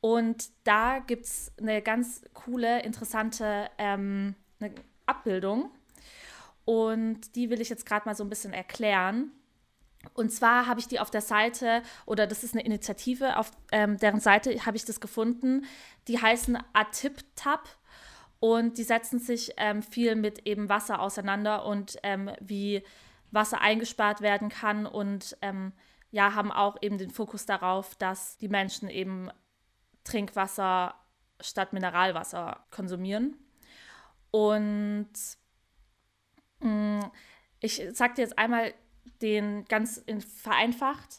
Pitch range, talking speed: 200-230 Hz, 130 wpm